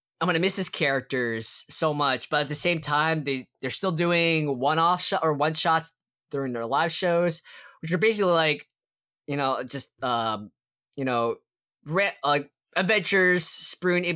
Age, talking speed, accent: 20-39, 170 wpm, American